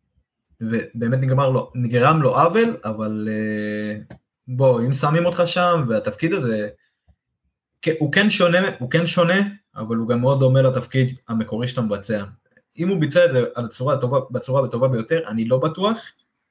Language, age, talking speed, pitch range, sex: Hebrew, 20-39, 145 wpm, 110-145 Hz, male